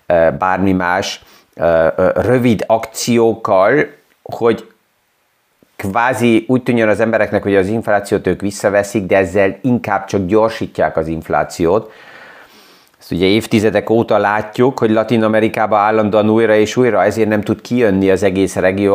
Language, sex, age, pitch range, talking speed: Hungarian, male, 30-49, 90-110 Hz, 130 wpm